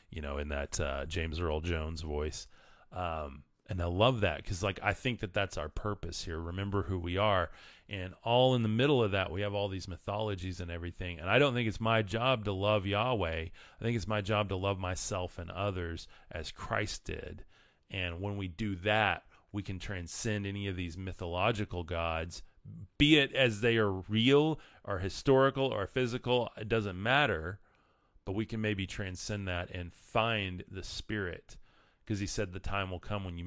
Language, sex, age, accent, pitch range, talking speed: English, male, 40-59, American, 90-105 Hz, 195 wpm